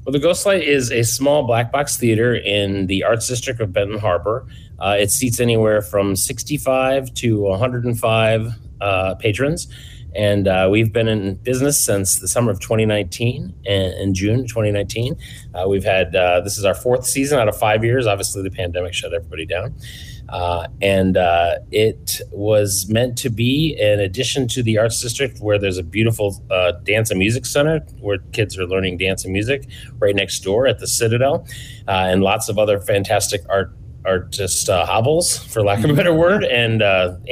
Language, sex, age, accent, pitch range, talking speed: English, male, 30-49, American, 95-120 Hz, 185 wpm